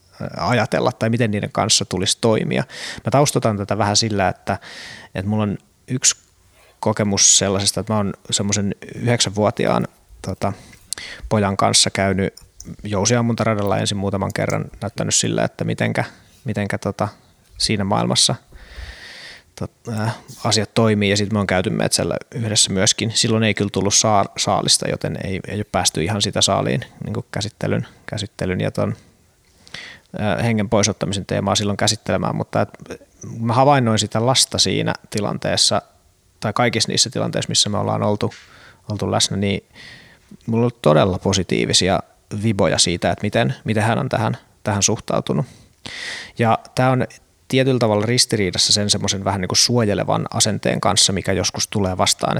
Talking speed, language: 145 wpm, Finnish